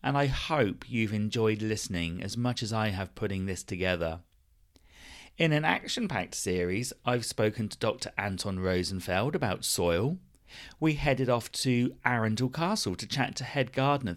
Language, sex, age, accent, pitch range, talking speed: English, male, 40-59, British, 95-125 Hz, 155 wpm